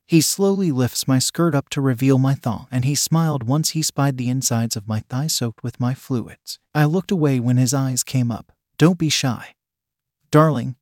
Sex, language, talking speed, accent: male, English, 205 wpm, American